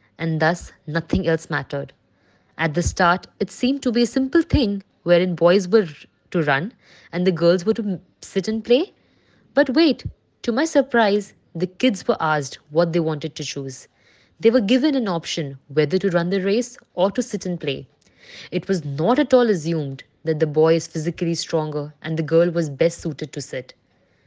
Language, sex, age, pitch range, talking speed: English, female, 20-39, 155-205 Hz, 190 wpm